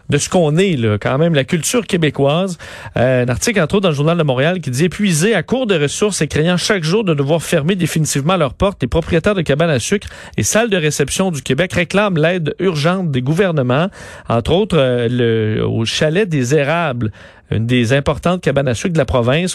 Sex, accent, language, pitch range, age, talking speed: male, Canadian, French, 135-180 Hz, 40-59, 220 wpm